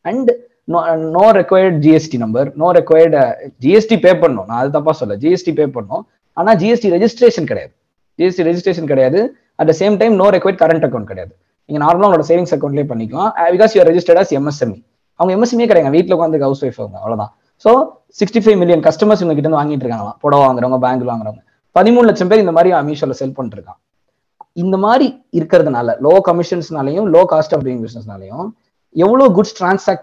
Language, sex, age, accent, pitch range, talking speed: Tamil, male, 20-39, native, 130-190 Hz, 165 wpm